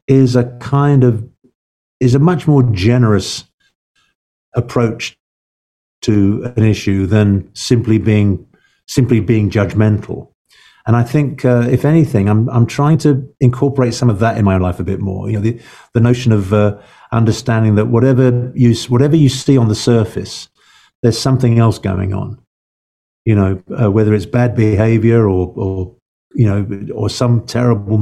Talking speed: 160 wpm